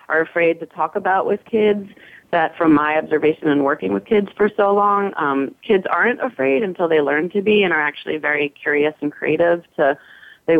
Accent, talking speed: American, 205 wpm